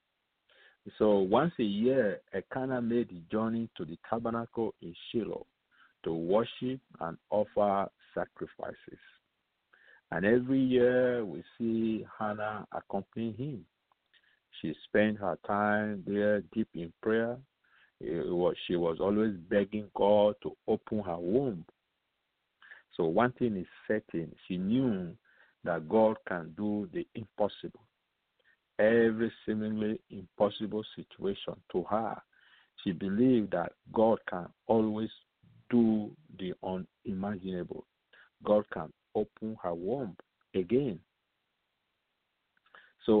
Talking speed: 110 wpm